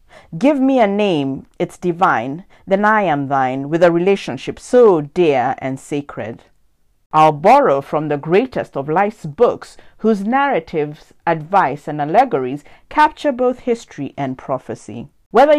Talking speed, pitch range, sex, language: 140 wpm, 145-220 Hz, female, English